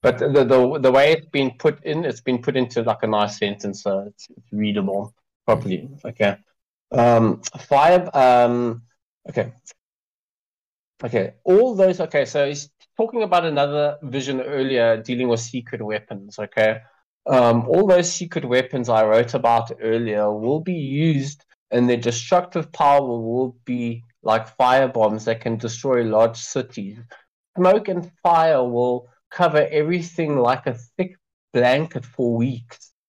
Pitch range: 120-175 Hz